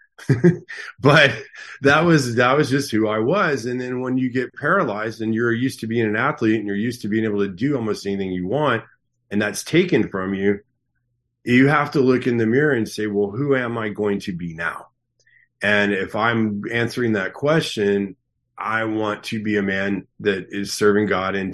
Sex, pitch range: male, 105-125 Hz